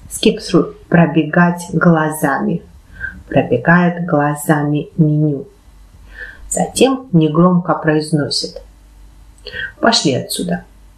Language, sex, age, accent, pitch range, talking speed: Russian, female, 30-49, native, 140-180 Hz, 60 wpm